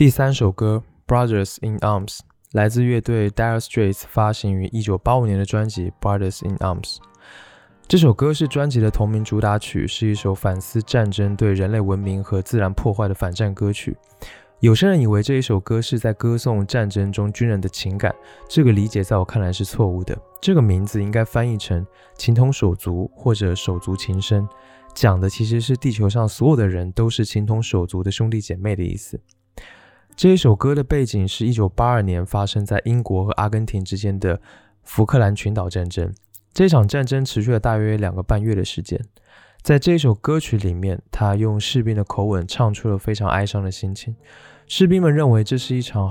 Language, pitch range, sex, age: Chinese, 100-120 Hz, male, 20-39